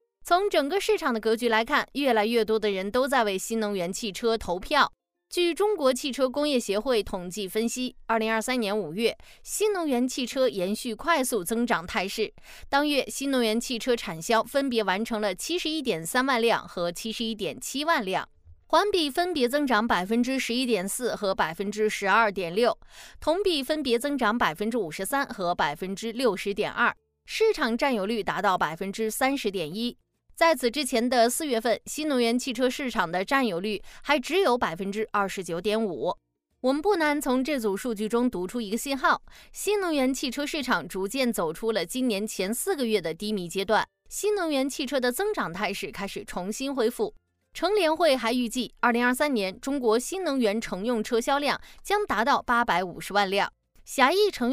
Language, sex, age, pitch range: Chinese, female, 20-39, 210-275 Hz